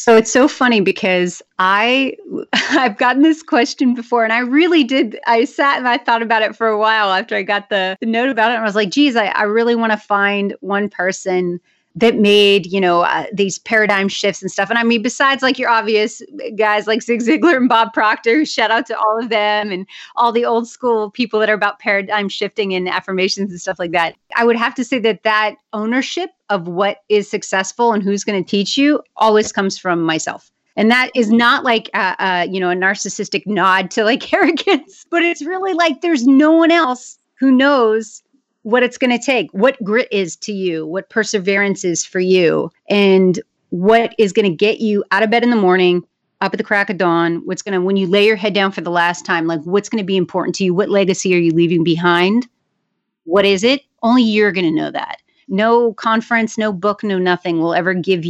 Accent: American